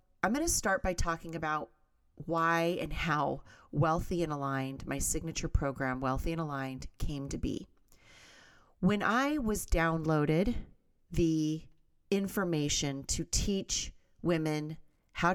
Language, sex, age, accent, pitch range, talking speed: English, female, 30-49, American, 145-185 Hz, 125 wpm